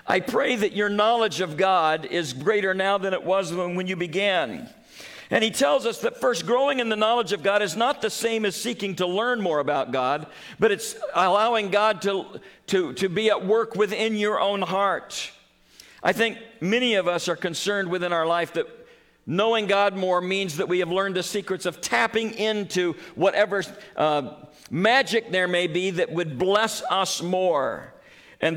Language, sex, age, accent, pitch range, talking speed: English, male, 50-69, American, 180-220 Hz, 185 wpm